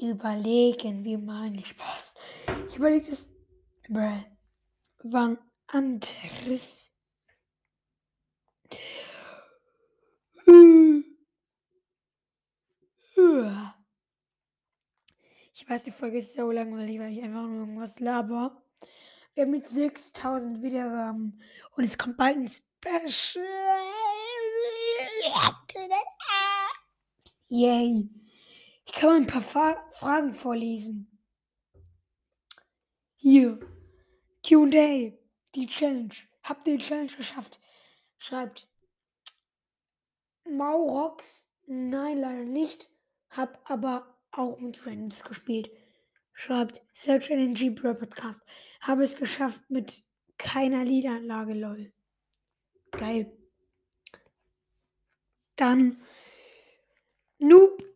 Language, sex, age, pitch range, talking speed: German, female, 20-39, 230-310 Hz, 80 wpm